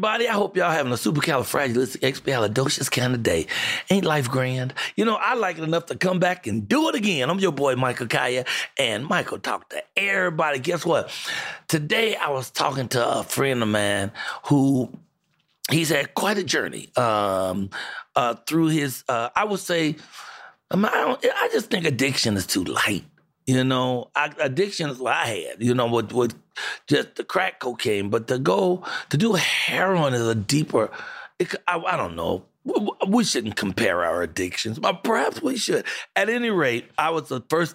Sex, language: male, English